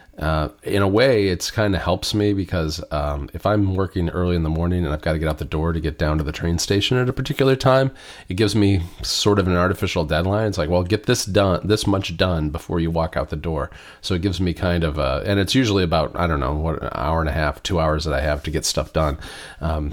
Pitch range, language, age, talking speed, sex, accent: 75-95 Hz, English, 40-59, 270 wpm, male, American